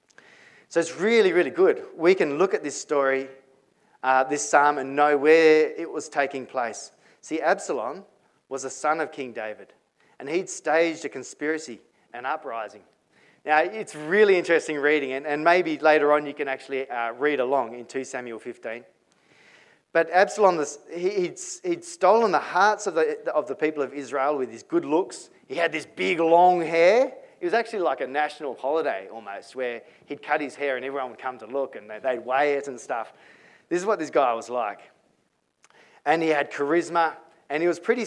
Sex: male